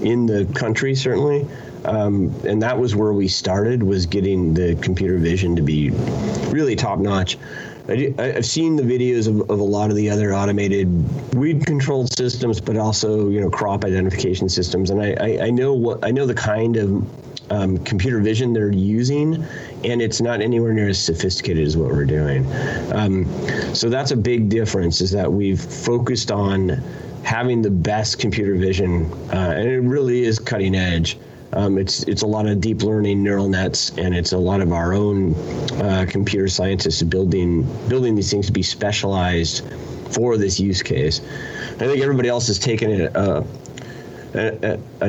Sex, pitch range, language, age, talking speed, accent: male, 95-120 Hz, English, 30-49, 175 wpm, American